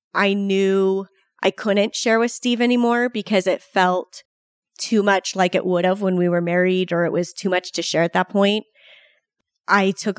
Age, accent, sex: 30-49, American, female